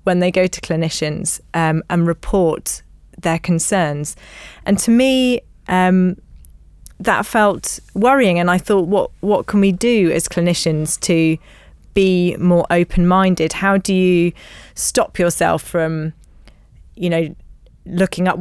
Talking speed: 135 wpm